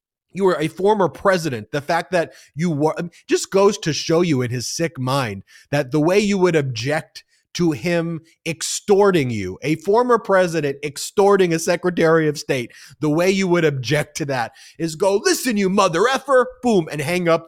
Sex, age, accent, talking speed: male, 30-49, American, 185 wpm